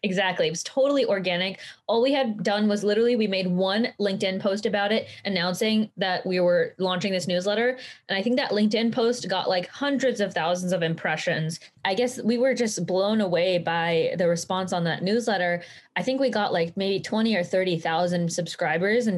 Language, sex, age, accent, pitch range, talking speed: English, female, 20-39, American, 175-215 Hz, 195 wpm